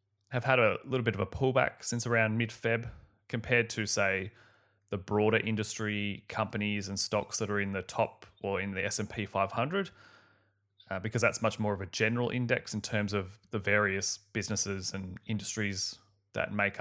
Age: 20-39